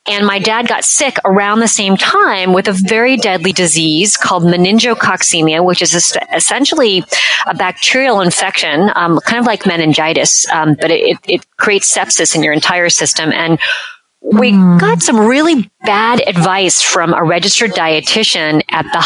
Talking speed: 155 wpm